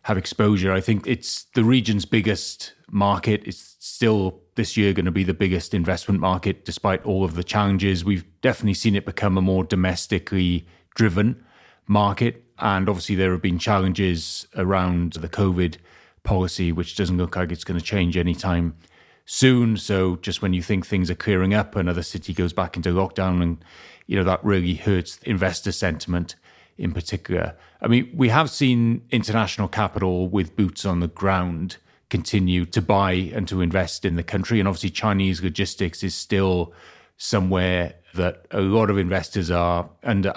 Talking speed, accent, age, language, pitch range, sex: 170 wpm, British, 30-49, English, 90-105 Hz, male